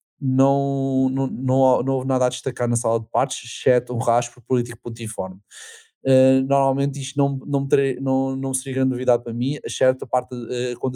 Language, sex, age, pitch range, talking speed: Portuguese, male, 20-39, 120-135 Hz, 190 wpm